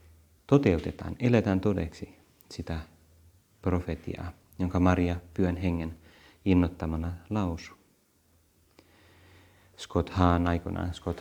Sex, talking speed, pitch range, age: male, 80 wpm, 85-95 Hz, 30-49